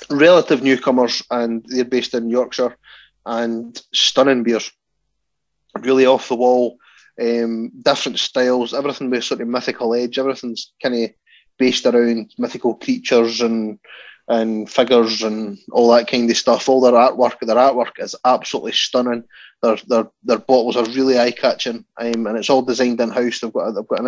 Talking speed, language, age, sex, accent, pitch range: 165 wpm, English, 20-39, male, British, 115-125 Hz